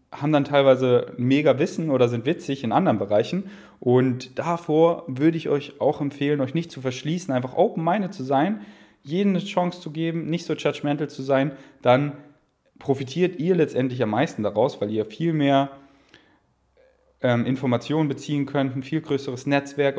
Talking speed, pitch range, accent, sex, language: 165 wpm, 130-165 Hz, German, male, German